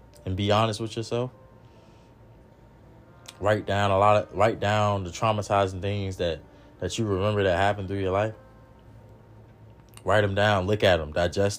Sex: male